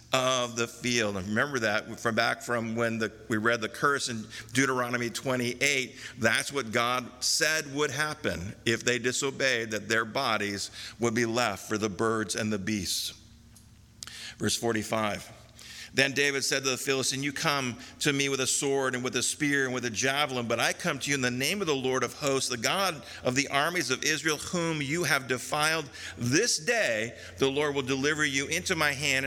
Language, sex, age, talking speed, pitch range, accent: English, male, 50-69, 195 wpm, 120-145 Hz, American